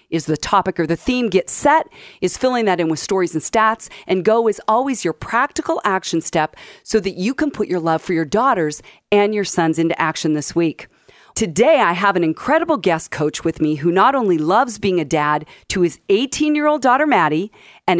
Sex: female